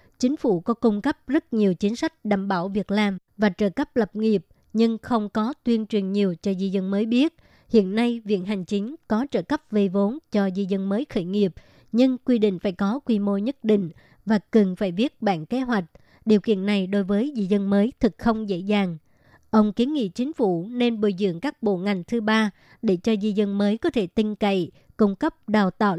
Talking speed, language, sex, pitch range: 230 wpm, Vietnamese, male, 200-230 Hz